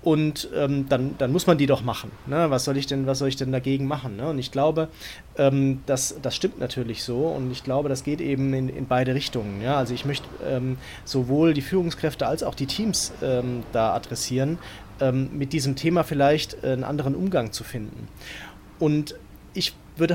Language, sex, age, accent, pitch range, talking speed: German, male, 30-49, German, 125-150 Hz, 205 wpm